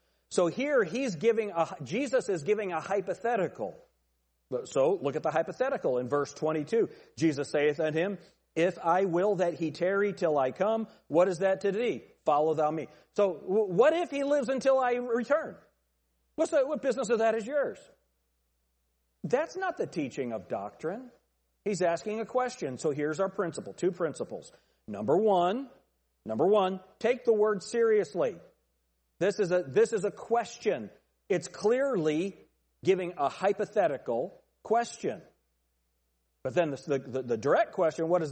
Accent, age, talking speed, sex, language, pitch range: American, 40-59, 160 wpm, male, English, 145-215 Hz